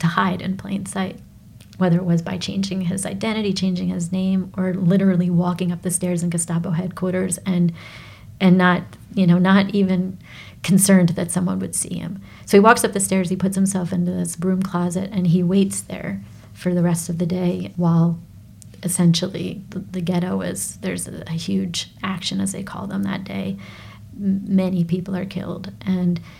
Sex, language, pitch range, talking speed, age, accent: female, English, 170-190 Hz, 185 wpm, 40-59, American